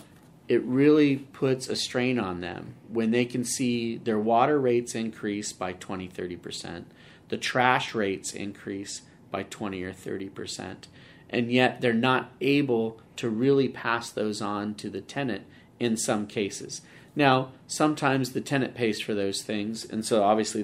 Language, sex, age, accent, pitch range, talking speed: English, male, 30-49, American, 105-125 Hz, 150 wpm